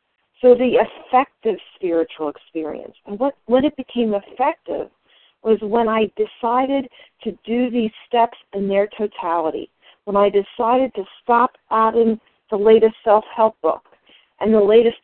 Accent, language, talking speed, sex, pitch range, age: American, English, 140 wpm, female, 205-245 Hz, 50-69